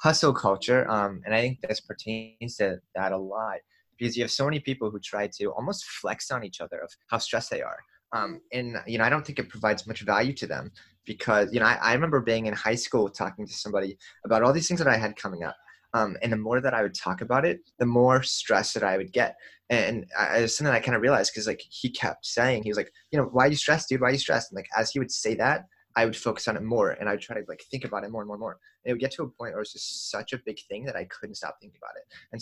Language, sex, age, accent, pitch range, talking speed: English, male, 20-39, American, 110-135 Hz, 290 wpm